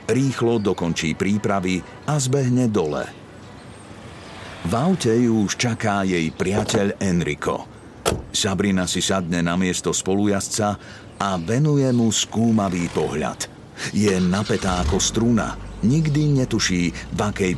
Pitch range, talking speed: 90-115 Hz, 115 wpm